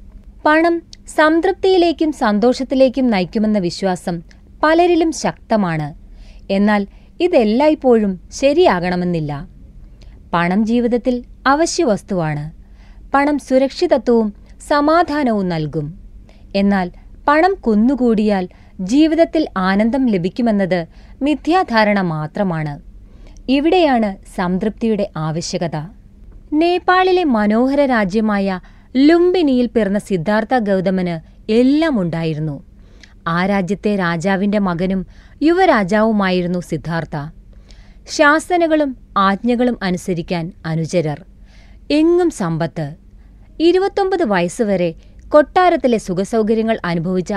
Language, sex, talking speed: Malayalam, female, 70 wpm